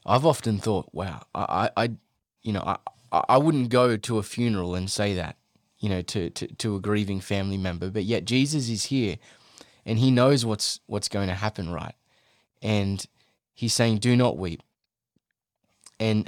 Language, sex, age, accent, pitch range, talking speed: English, male, 20-39, Australian, 105-125 Hz, 175 wpm